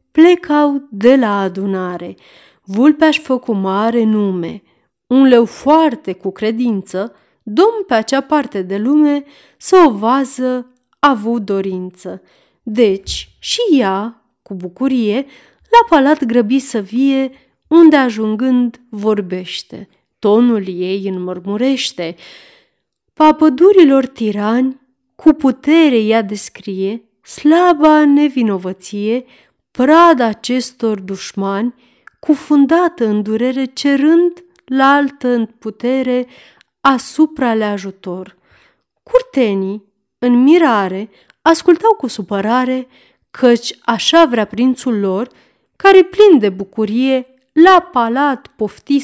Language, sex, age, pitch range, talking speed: Romanian, female, 30-49, 210-290 Hz, 100 wpm